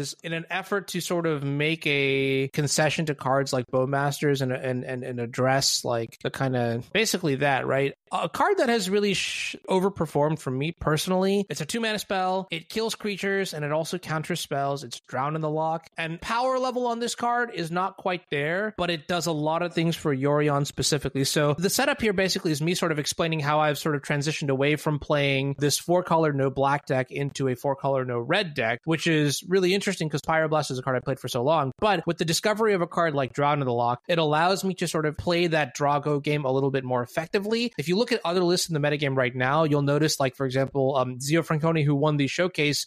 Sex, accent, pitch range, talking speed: male, American, 140-180 Hz, 230 wpm